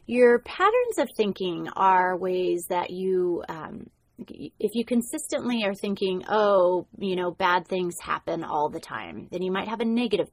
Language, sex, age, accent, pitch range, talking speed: English, female, 30-49, American, 180-225 Hz, 170 wpm